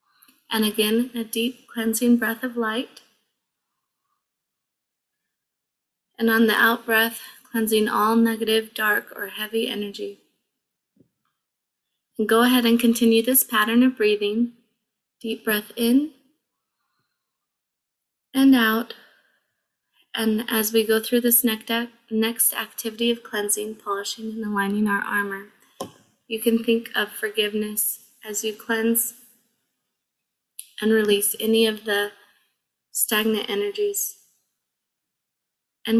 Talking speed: 110 wpm